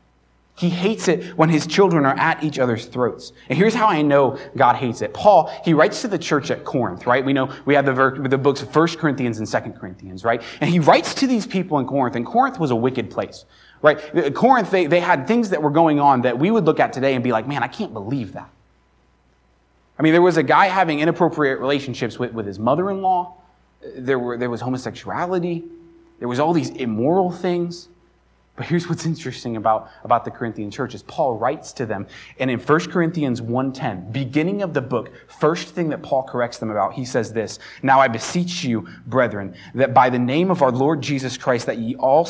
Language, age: English, 20-39